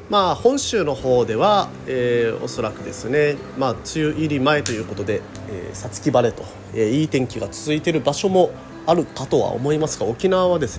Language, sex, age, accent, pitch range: Japanese, male, 30-49, native, 110-155 Hz